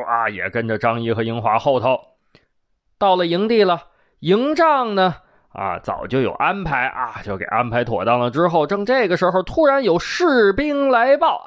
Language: Chinese